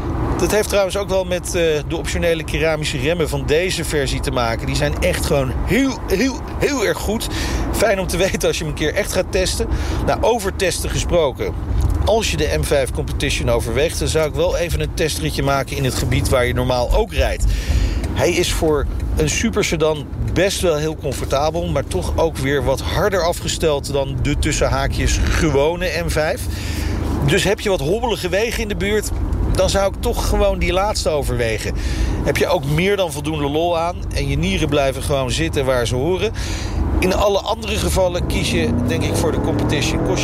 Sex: male